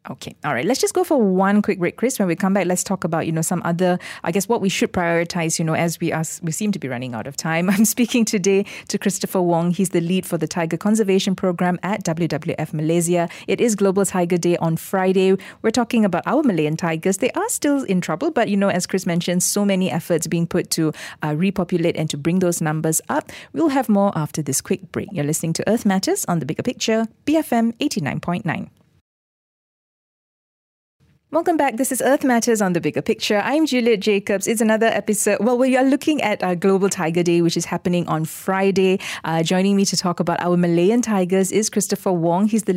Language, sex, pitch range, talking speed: English, female, 170-210 Hz, 220 wpm